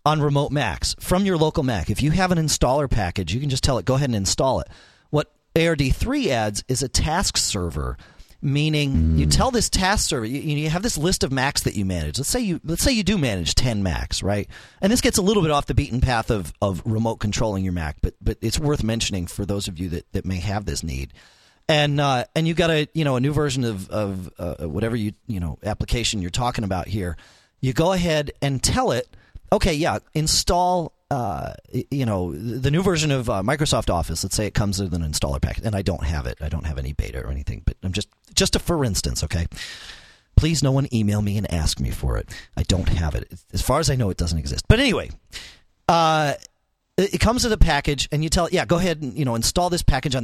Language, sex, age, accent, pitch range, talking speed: English, male, 40-59, American, 95-150 Hz, 240 wpm